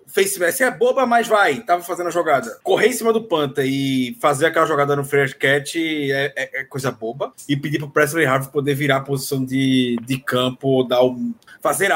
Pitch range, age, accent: 135-220 Hz, 20-39, Brazilian